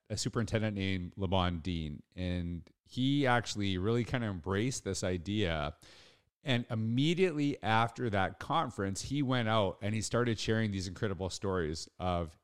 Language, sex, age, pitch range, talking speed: English, male, 40-59, 95-120 Hz, 140 wpm